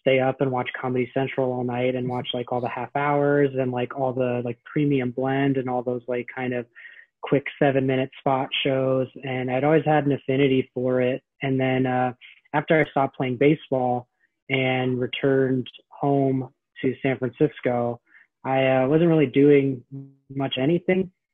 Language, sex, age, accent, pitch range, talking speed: English, male, 20-39, American, 125-140 Hz, 175 wpm